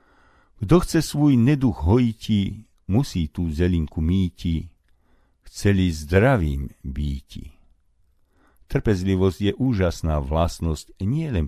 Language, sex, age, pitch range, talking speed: Slovak, male, 50-69, 80-110 Hz, 90 wpm